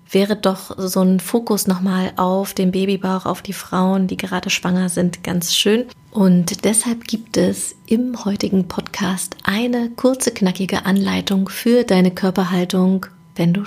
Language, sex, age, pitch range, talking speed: German, female, 30-49, 185-210 Hz, 150 wpm